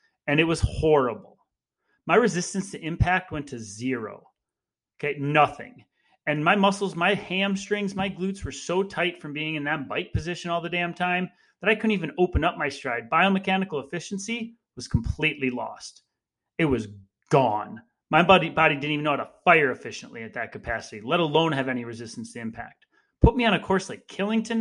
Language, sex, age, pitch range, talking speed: English, male, 30-49, 140-195 Hz, 185 wpm